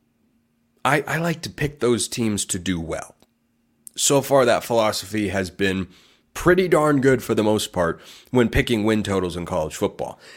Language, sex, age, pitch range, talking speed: English, male, 30-49, 105-145 Hz, 175 wpm